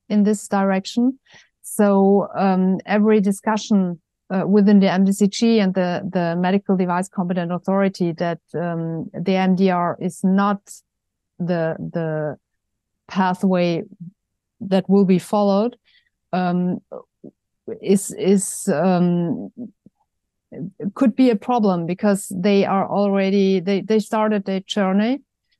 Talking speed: 115 wpm